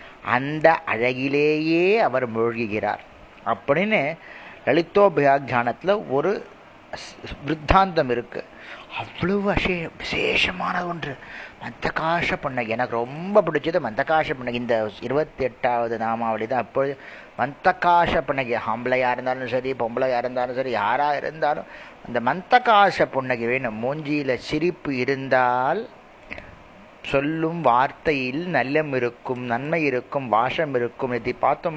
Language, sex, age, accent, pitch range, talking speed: Tamil, male, 30-49, native, 125-160 Hz, 105 wpm